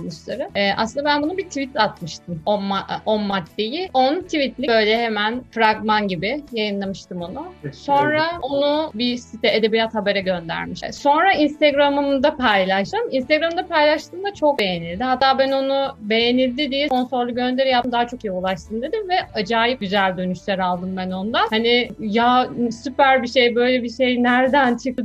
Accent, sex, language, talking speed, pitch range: native, female, Turkish, 150 wpm, 215-280 Hz